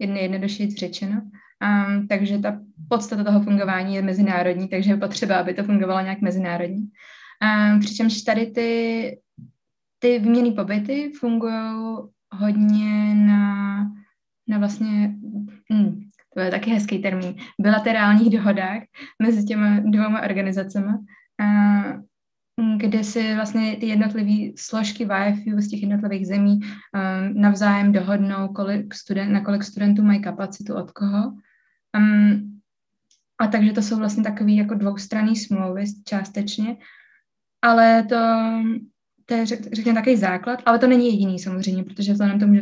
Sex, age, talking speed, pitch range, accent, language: female, 20-39, 135 wpm, 200-220 Hz, native, Czech